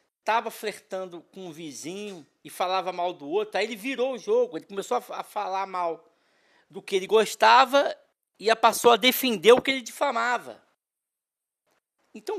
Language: Portuguese